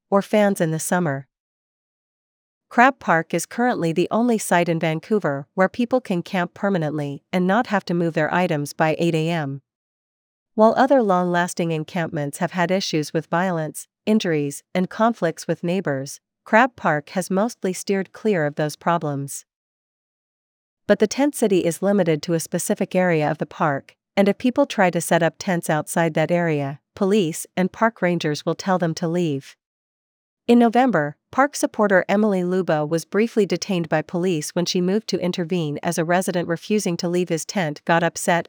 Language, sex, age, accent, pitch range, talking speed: English, female, 40-59, American, 160-200 Hz, 175 wpm